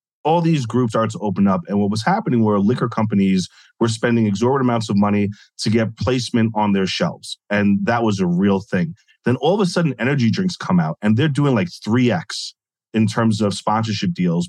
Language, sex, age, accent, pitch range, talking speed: English, male, 30-49, American, 105-145 Hz, 210 wpm